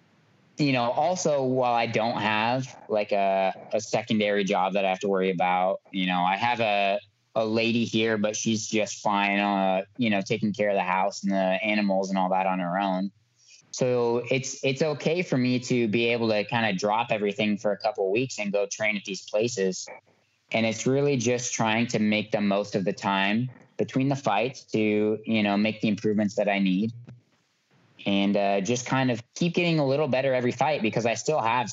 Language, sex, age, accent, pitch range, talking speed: English, male, 20-39, American, 100-120 Hz, 210 wpm